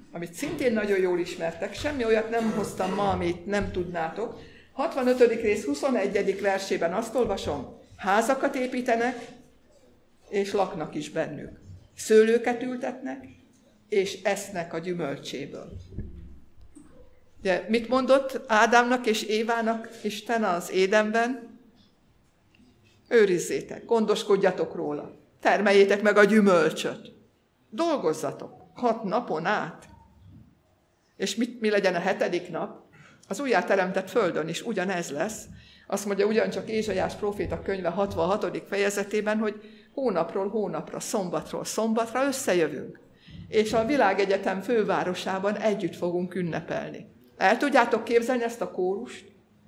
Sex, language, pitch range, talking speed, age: female, Hungarian, 175-230 Hz, 110 wpm, 60-79